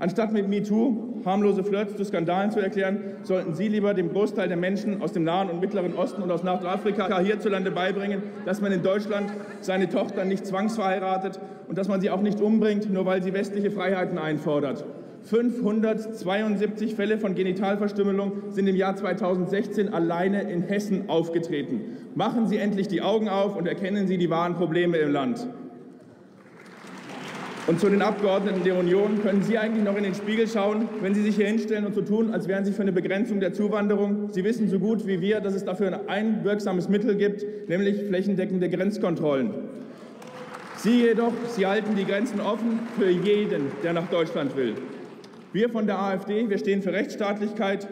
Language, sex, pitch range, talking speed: German, male, 185-210 Hz, 175 wpm